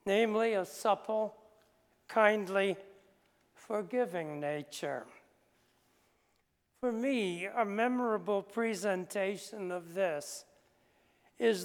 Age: 60-79